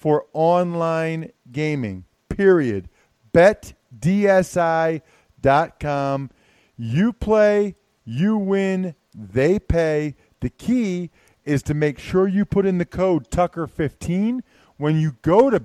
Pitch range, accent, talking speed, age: 130-185 Hz, American, 105 wpm, 40-59